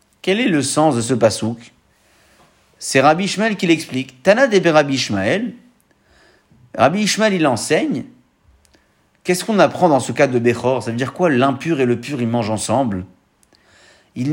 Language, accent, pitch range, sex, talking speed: French, French, 120-165 Hz, male, 170 wpm